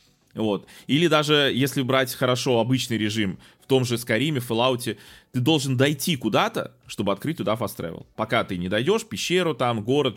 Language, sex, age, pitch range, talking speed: Russian, male, 20-39, 110-160 Hz, 165 wpm